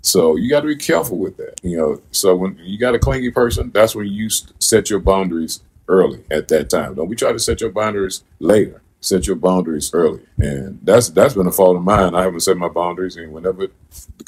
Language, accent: English, American